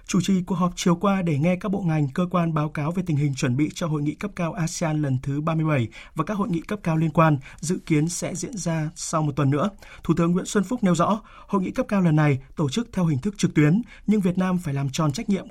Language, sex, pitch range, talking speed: Vietnamese, male, 150-195 Hz, 285 wpm